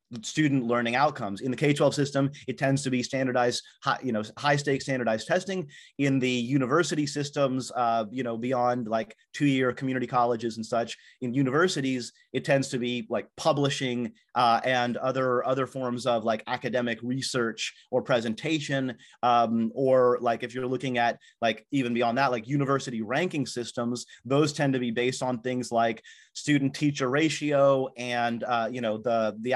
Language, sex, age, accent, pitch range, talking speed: English, male, 30-49, American, 120-140 Hz, 165 wpm